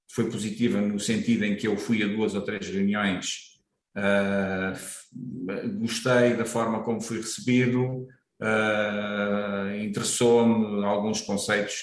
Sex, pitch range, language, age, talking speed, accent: male, 100-120 Hz, Portuguese, 50-69, 125 wpm, Portuguese